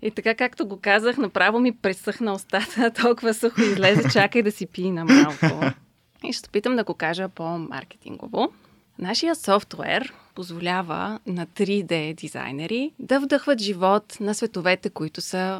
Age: 20-39